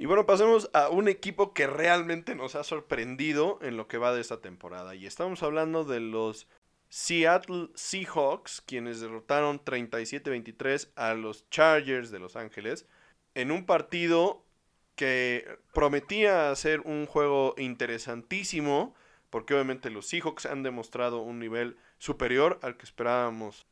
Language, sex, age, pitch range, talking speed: Spanish, male, 20-39, 120-155 Hz, 140 wpm